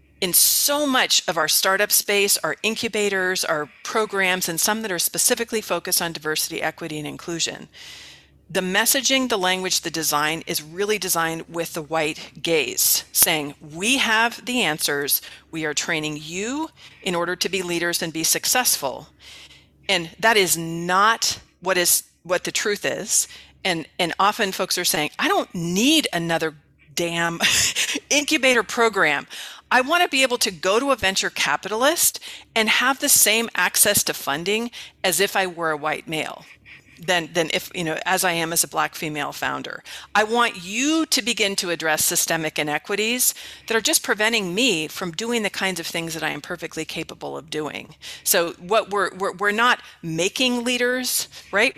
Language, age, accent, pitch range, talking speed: Dutch, 40-59, American, 165-220 Hz, 175 wpm